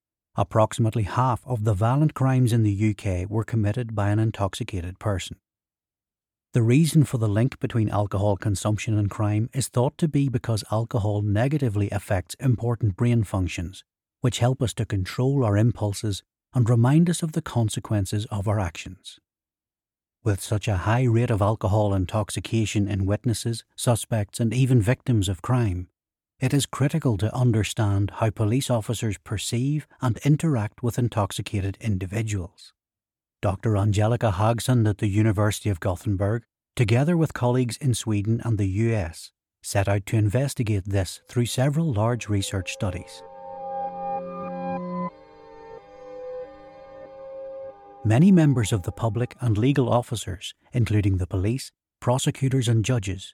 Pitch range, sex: 105-125 Hz, male